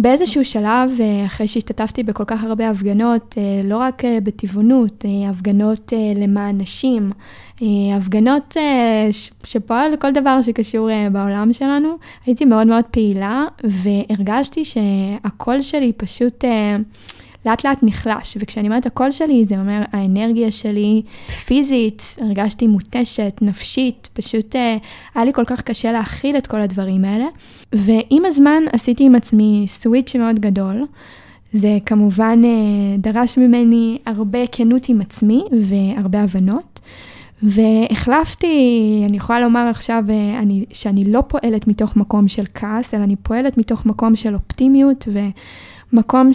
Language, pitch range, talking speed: Hebrew, 210-245 Hz, 120 wpm